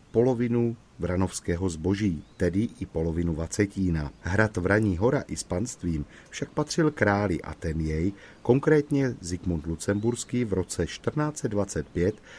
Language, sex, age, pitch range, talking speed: Czech, male, 40-59, 85-110 Hz, 120 wpm